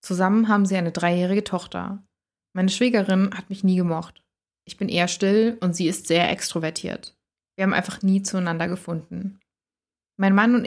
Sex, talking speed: female, 170 wpm